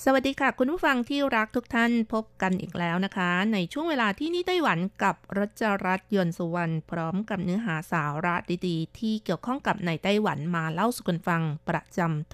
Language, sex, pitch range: Thai, female, 175-240 Hz